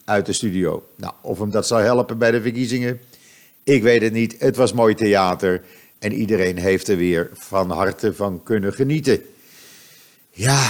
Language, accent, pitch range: Dutch, Dutch, 100-125 Hz